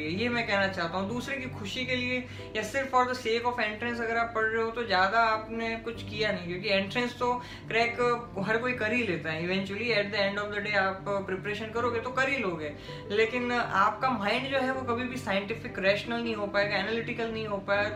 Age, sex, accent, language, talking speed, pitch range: 20-39, female, native, Hindi, 95 wpm, 190-235 Hz